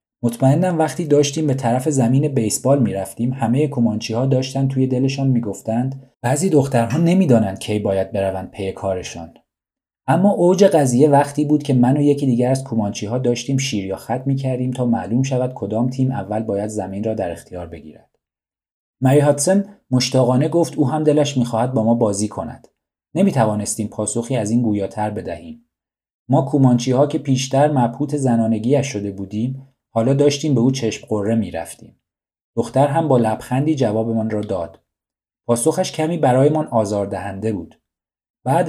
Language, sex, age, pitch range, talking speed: Persian, male, 40-59, 110-140 Hz, 155 wpm